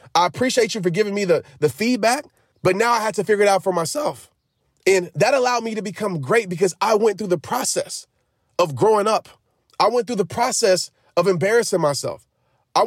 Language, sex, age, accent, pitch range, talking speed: English, male, 30-49, American, 175-225 Hz, 205 wpm